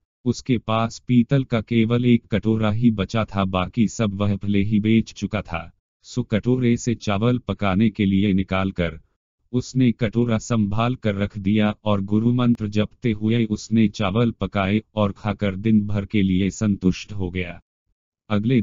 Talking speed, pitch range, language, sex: 160 wpm, 100-115 Hz, Hindi, male